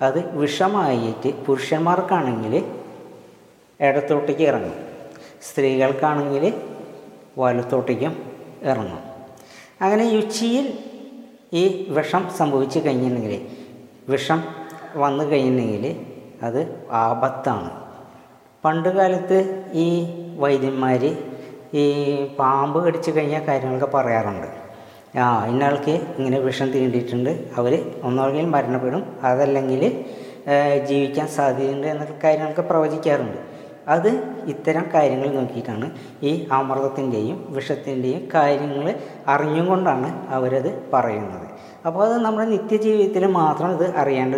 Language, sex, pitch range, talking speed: Malayalam, female, 130-165 Hz, 80 wpm